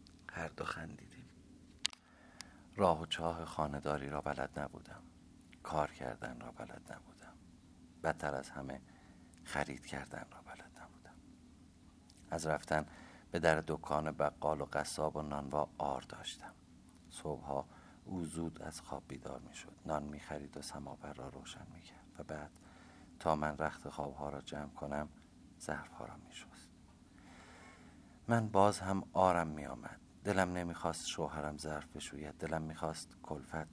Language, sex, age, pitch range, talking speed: Persian, male, 50-69, 75-85 Hz, 135 wpm